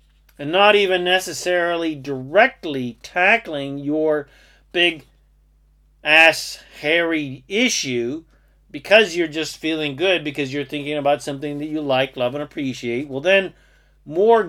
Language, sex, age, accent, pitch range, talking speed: English, male, 40-59, American, 135-175 Hz, 120 wpm